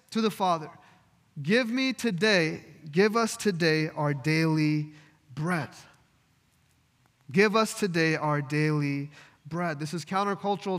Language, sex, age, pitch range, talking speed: English, male, 20-39, 155-200 Hz, 115 wpm